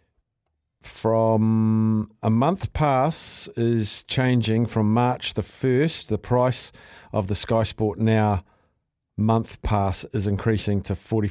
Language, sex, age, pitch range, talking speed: English, male, 50-69, 105-125 Hz, 120 wpm